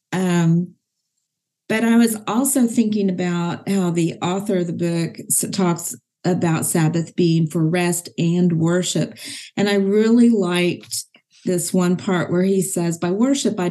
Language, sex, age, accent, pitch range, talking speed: English, female, 40-59, American, 165-195 Hz, 150 wpm